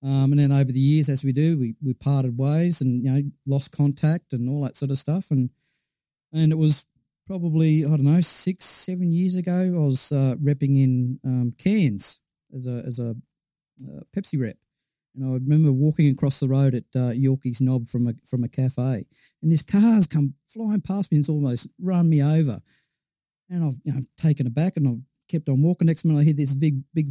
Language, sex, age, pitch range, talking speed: English, male, 40-59, 130-155 Hz, 220 wpm